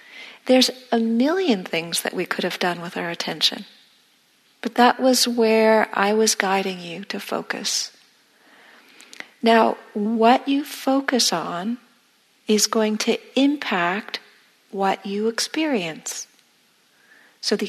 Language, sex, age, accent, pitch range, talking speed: English, female, 50-69, American, 205-245 Hz, 120 wpm